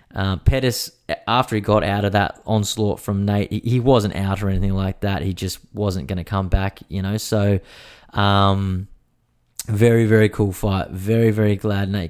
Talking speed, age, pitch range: 190 wpm, 20-39, 100-115 Hz